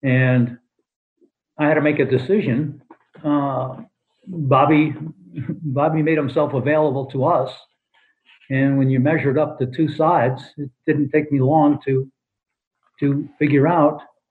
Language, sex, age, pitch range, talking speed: English, male, 60-79, 130-155 Hz, 135 wpm